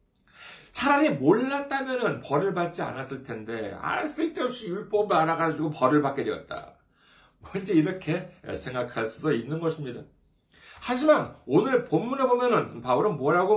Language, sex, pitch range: Korean, male, 140-230 Hz